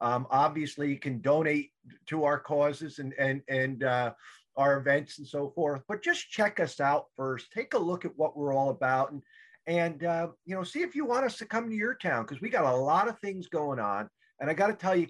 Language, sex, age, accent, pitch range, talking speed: English, male, 50-69, American, 130-170 Hz, 245 wpm